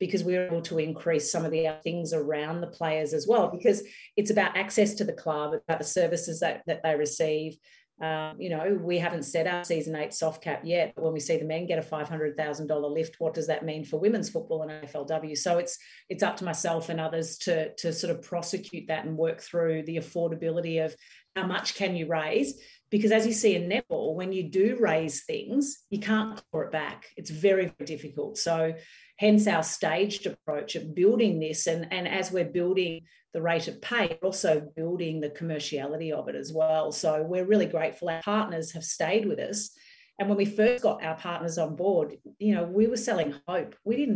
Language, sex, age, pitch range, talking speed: English, female, 40-59, 160-195 Hz, 215 wpm